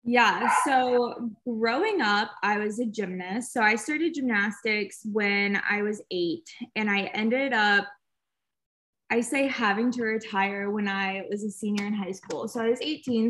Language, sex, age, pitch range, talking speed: English, female, 20-39, 195-235 Hz, 165 wpm